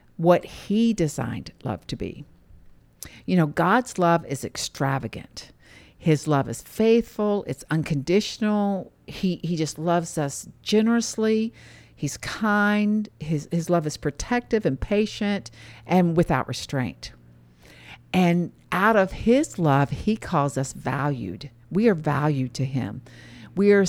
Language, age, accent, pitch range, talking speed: English, 50-69, American, 130-200 Hz, 130 wpm